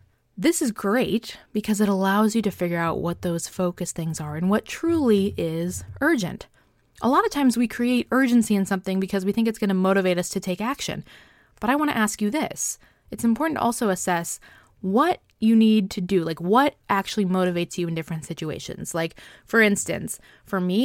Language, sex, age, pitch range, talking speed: English, female, 20-39, 175-235 Hz, 200 wpm